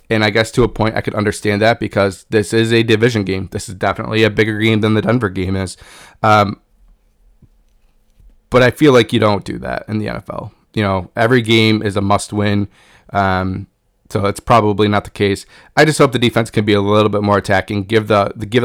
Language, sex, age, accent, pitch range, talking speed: English, male, 20-39, American, 105-115 Hz, 220 wpm